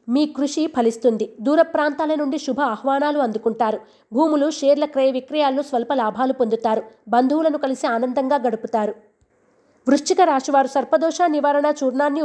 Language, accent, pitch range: Telugu, native, 245-300 Hz